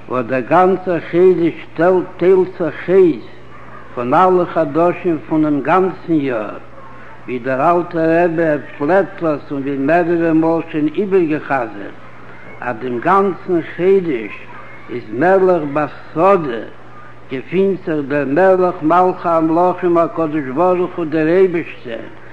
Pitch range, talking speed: 150-185 Hz, 115 wpm